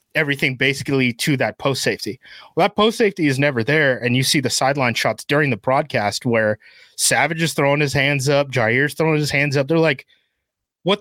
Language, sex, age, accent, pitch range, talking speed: English, male, 30-49, American, 115-155 Hz, 190 wpm